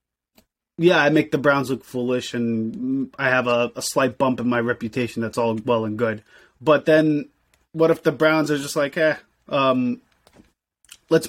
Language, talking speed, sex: English, 180 wpm, male